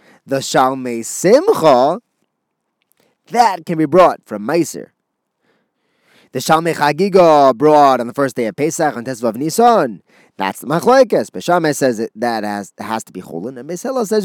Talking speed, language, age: 165 wpm, English, 20-39